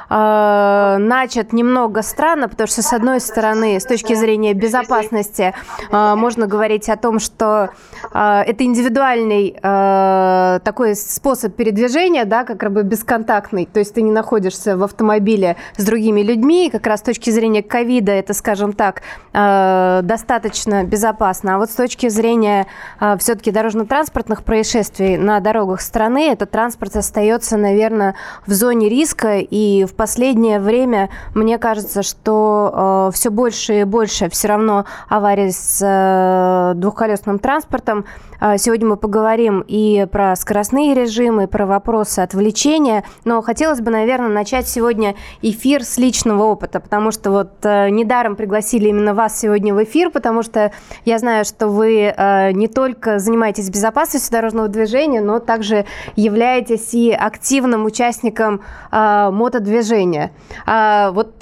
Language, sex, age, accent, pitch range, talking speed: Russian, female, 20-39, native, 205-235 Hz, 135 wpm